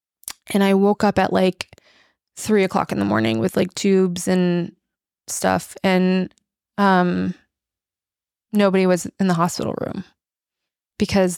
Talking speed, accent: 130 wpm, American